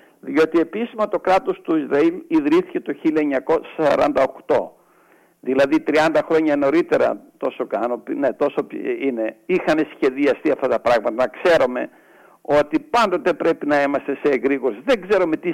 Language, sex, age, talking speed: Greek, male, 60-79, 140 wpm